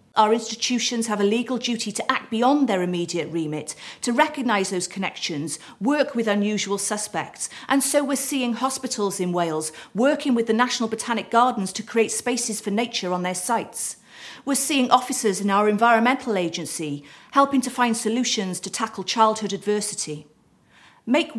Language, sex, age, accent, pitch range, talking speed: English, female, 40-59, British, 195-250 Hz, 160 wpm